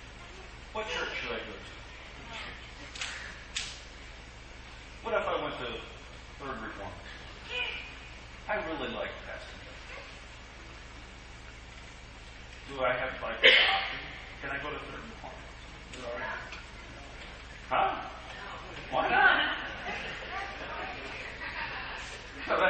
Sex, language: male, English